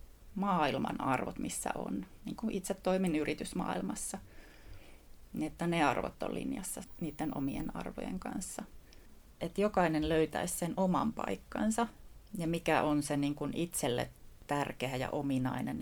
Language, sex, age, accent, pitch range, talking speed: Finnish, female, 30-49, native, 145-170 Hz, 110 wpm